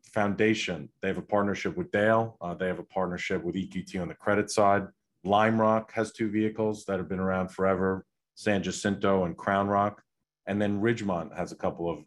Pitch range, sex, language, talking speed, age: 95-110 Hz, male, English, 200 wpm, 30-49